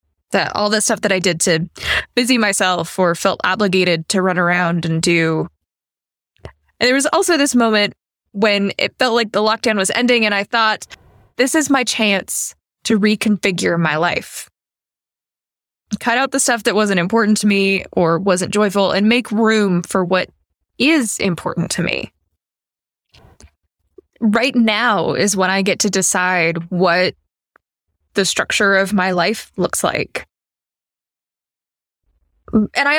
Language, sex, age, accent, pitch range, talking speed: English, female, 20-39, American, 175-230 Hz, 145 wpm